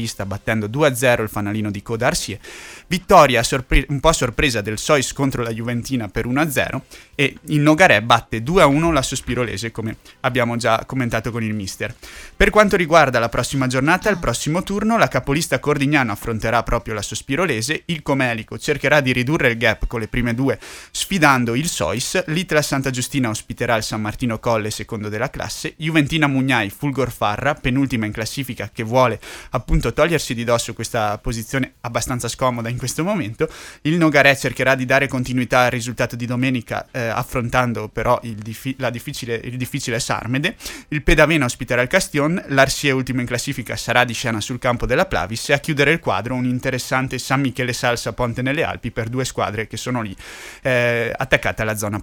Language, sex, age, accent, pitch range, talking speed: Italian, male, 30-49, native, 115-140 Hz, 180 wpm